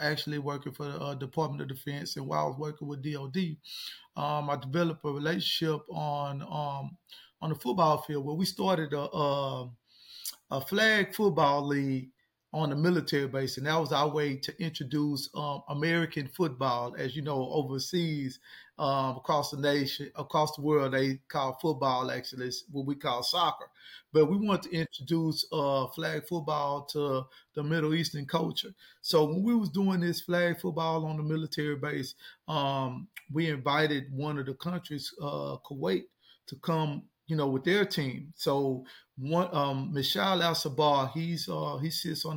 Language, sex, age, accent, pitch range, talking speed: English, male, 30-49, American, 140-170 Hz, 165 wpm